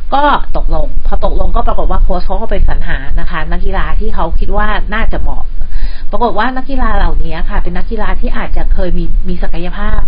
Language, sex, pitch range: Thai, female, 160-210 Hz